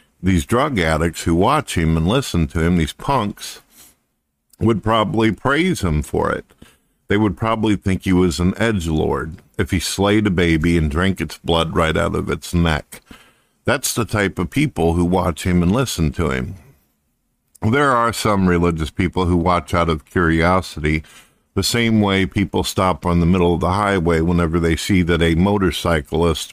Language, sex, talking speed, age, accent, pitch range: English, male, 180 wpm, 50-69, American, 85-105 Hz